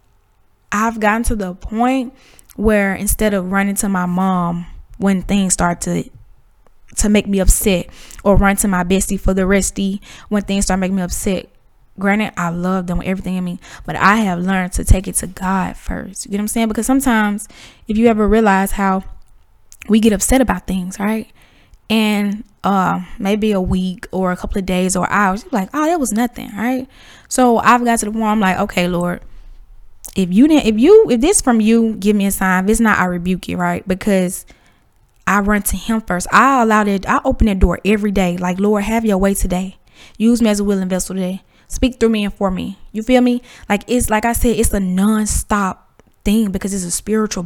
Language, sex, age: English, female, 10-29